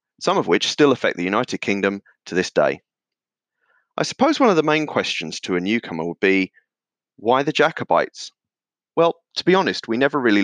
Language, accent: English, British